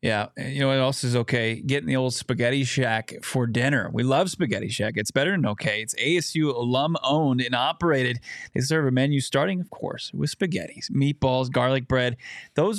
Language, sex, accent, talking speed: English, male, American, 190 wpm